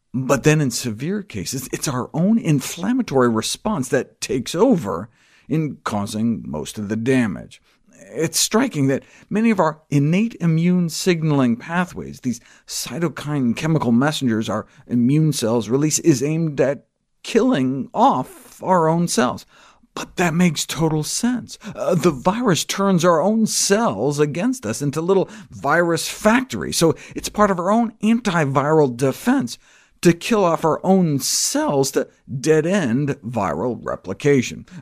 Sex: male